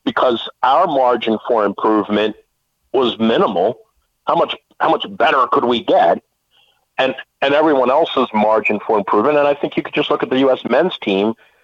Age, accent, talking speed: 50-69, American, 180 wpm